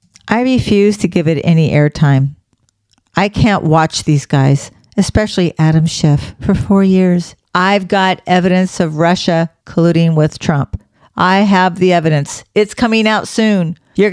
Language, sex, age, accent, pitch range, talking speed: English, female, 50-69, American, 150-195 Hz, 150 wpm